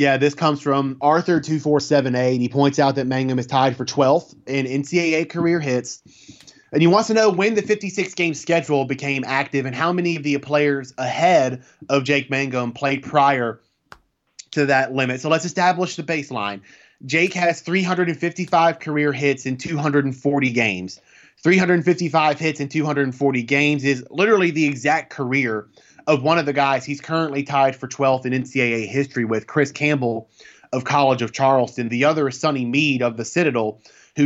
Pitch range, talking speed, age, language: 130-160 Hz, 170 wpm, 20-39, English